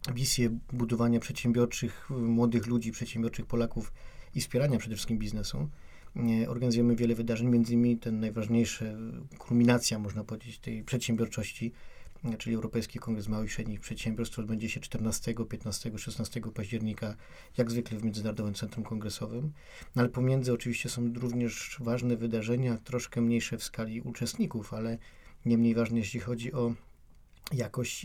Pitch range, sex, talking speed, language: 110-120 Hz, male, 145 wpm, Polish